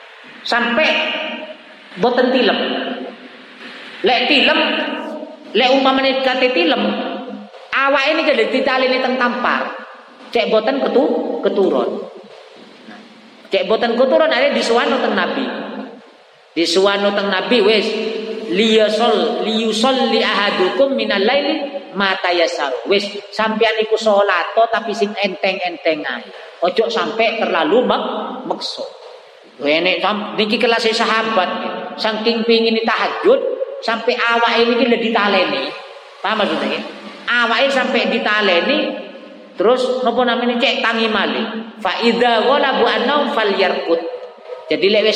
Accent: native